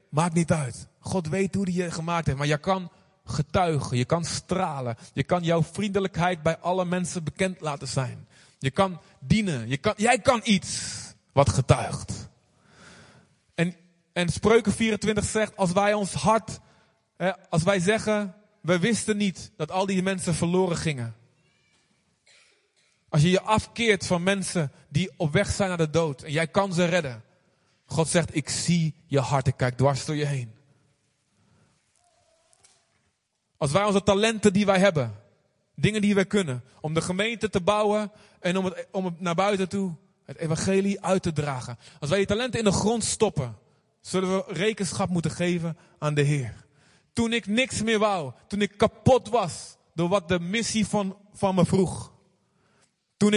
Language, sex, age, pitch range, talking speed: Dutch, male, 30-49, 150-200 Hz, 170 wpm